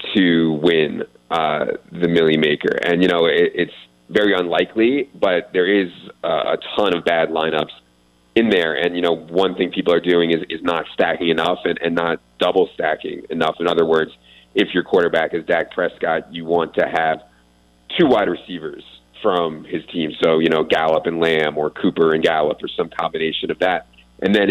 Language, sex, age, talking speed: English, male, 30-49, 190 wpm